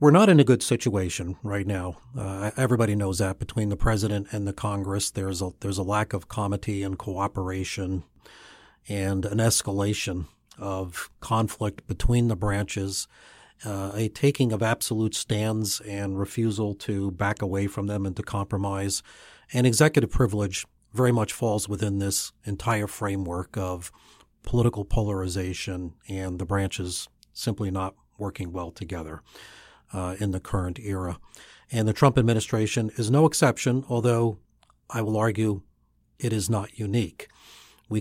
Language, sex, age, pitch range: English, male, 40-59, 95-110 Hz